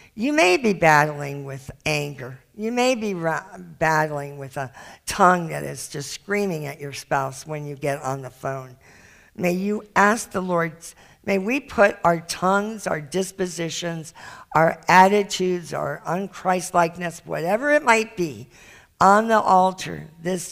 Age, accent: 50-69, American